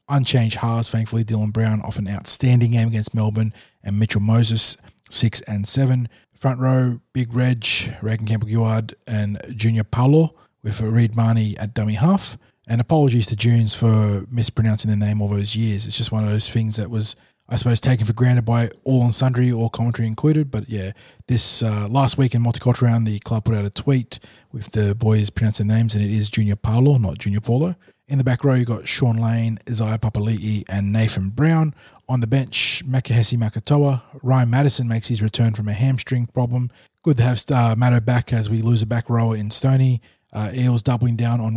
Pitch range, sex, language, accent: 110-125 Hz, male, English, Australian